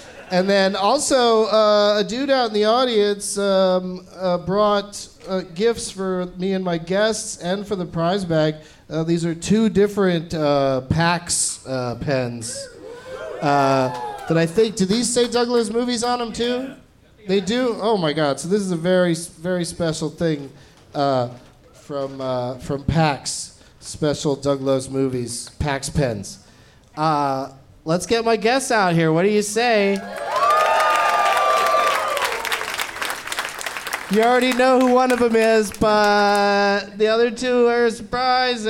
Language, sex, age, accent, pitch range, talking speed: English, male, 40-59, American, 165-240 Hz, 145 wpm